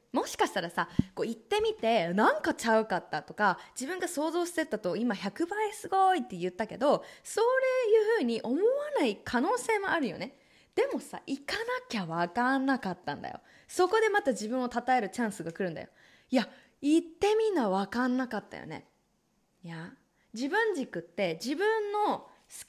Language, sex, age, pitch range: Japanese, female, 20-39, 225-370 Hz